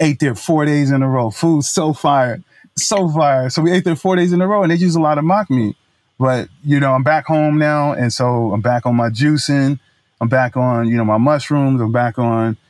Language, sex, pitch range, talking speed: English, male, 120-150 Hz, 250 wpm